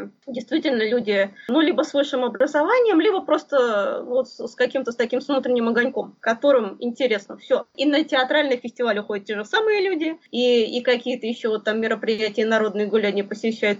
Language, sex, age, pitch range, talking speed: Russian, female, 20-39, 225-290 Hz, 175 wpm